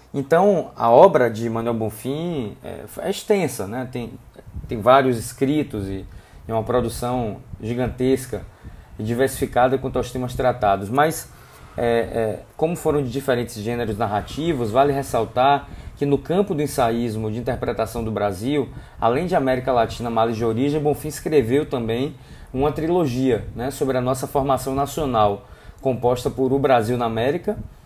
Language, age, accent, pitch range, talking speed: Portuguese, 20-39, Brazilian, 115-140 Hz, 140 wpm